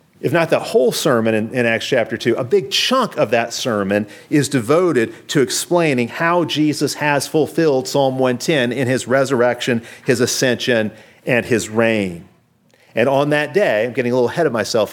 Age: 40-59